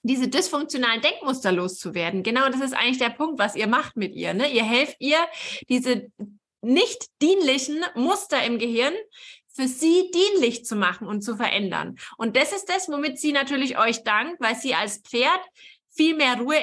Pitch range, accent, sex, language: 235-320 Hz, German, female, German